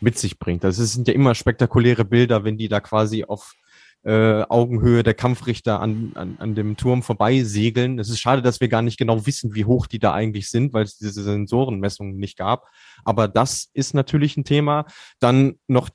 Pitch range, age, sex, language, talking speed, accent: 110-135 Hz, 20-39, male, German, 200 wpm, German